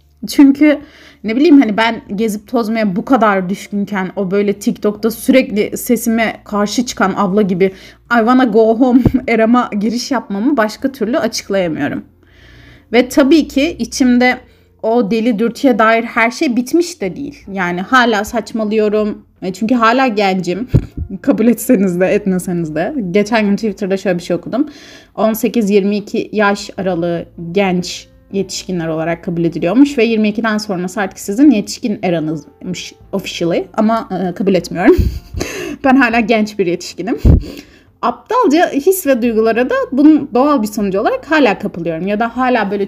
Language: Turkish